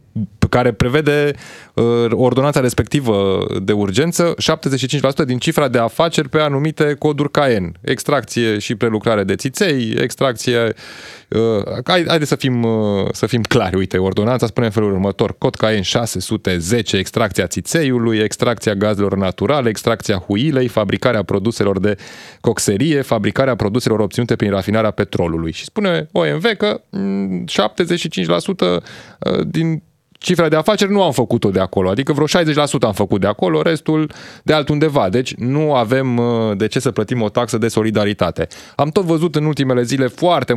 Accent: native